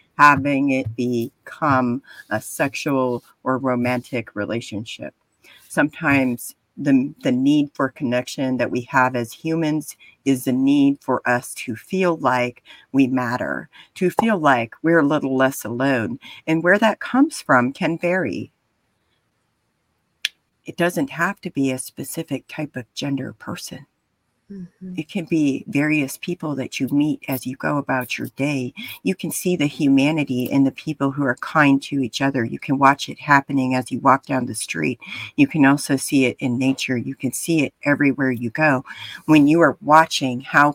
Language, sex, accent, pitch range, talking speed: English, female, American, 125-150 Hz, 165 wpm